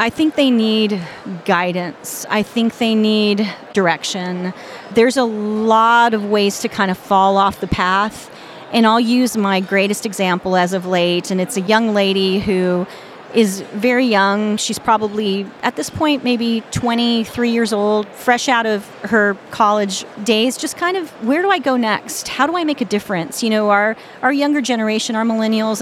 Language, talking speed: English, 180 wpm